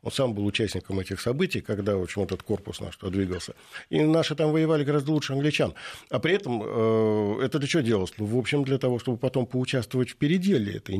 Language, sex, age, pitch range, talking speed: Russian, male, 50-69, 105-150 Hz, 220 wpm